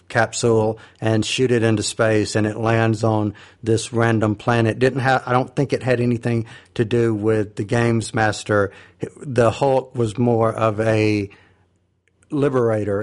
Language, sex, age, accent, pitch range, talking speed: English, male, 50-69, American, 105-120 Hz, 155 wpm